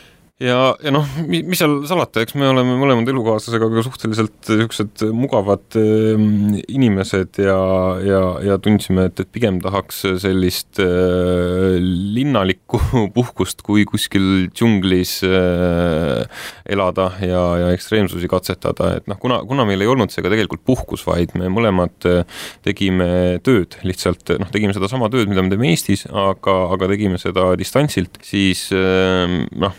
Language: English